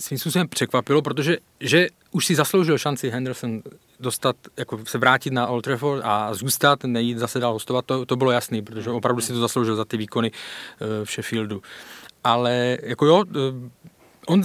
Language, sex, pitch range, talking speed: Czech, male, 125-150 Hz, 165 wpm